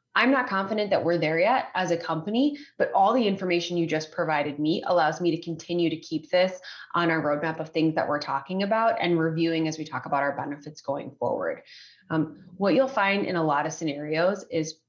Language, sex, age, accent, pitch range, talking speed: English, female, 20-39, American, 160-200 Hz, 220 wpm